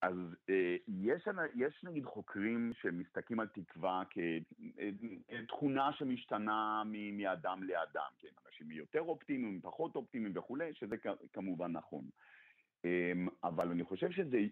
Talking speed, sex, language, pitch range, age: 110 wpm, male, Hebrew, 95-155 Hz, 50-69